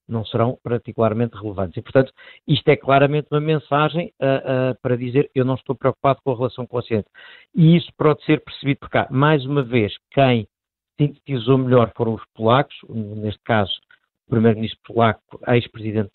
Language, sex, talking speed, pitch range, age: Portuguese, male, 165 wpm, 115-135 Hz, 50-69